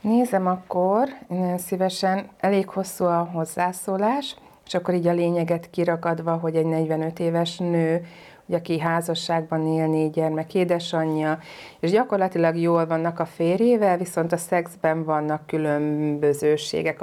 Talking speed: 125 wpm